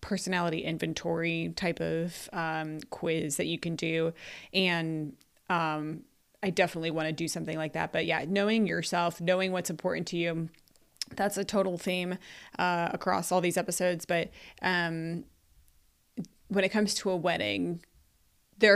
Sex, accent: female, American